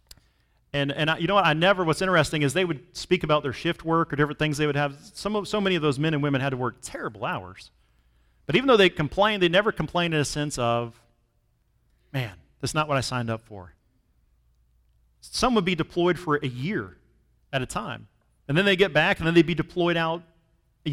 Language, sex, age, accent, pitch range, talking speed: English, male, 40-59, American, 110-165 Hz, 230 wpm